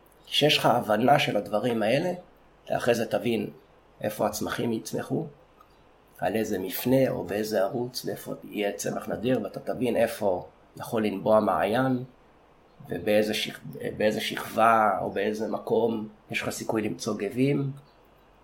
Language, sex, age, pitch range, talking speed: Hebrew, male, 30-49, 105-140 Hz, 125 wpm